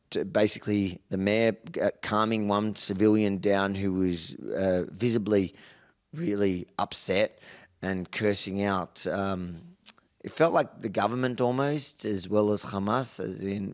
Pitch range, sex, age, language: 100-115 Hz, male, 20-39, English